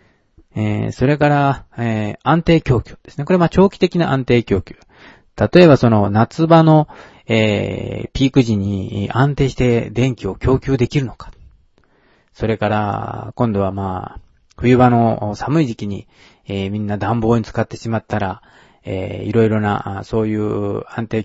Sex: male